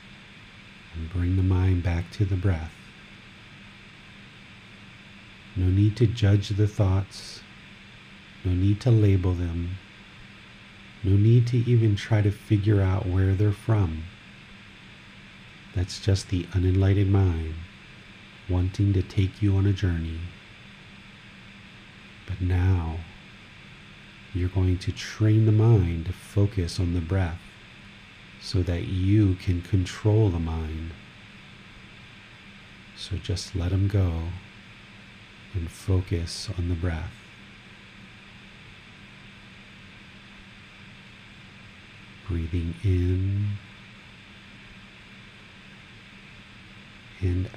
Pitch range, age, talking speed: 90-105 Hz, 40-59, 95 wpm